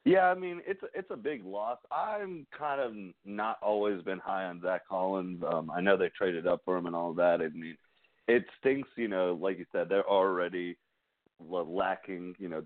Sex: male